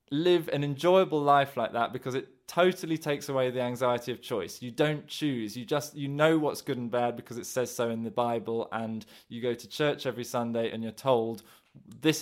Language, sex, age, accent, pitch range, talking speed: English, male, 20-39, British, 115-145 Hz, 215 wpm